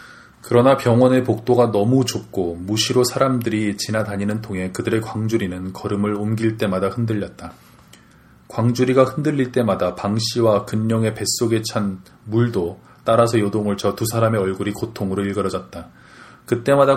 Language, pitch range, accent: Korean, 105-125 Hz, native